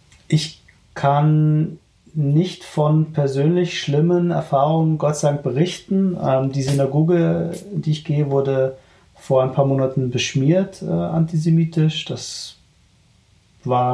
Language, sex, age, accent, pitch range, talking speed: German, male, 30-49, German, 125-150 Hz, 110 wpm